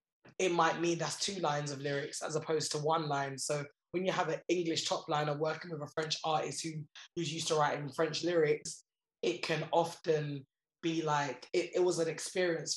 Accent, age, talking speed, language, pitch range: British, 20-39, 195 wpm, English, 150-165 Hz